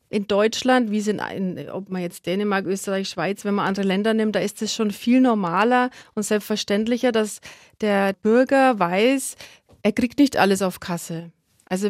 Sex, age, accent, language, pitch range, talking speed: female, 30-49, German, German, 205-250 Hz, 170 wpm